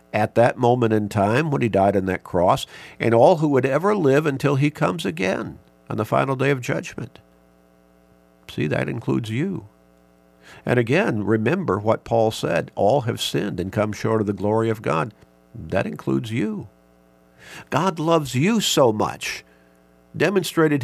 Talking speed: 165 wpm